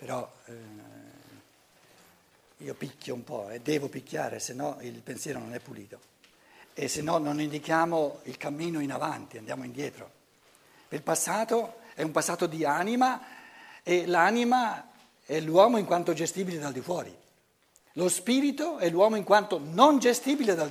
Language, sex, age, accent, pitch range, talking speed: Italian, male, 60-79, native, 160-230 Hz, 155 wpm